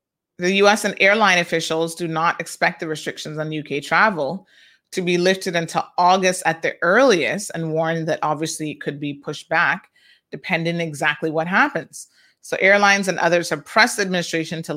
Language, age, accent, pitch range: English, 30-49, American, 155-195 Hz